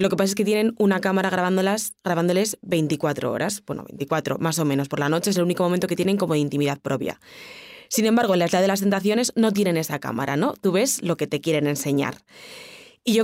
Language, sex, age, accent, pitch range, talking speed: Spanish, female, 20-39, Spanish, 155-200 Hz, 230 wpm